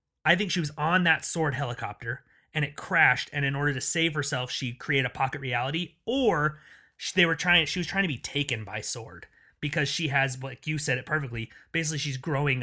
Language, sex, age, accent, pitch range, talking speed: English, male, 30-49, American, 130-165 Hz, 215 wpm